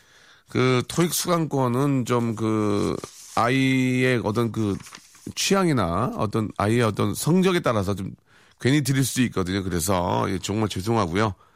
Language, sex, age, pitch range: Korean, male, 40-59, 105-135 Hz